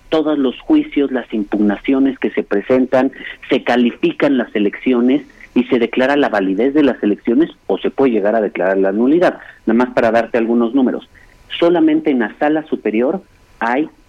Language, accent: Spanish, Mexican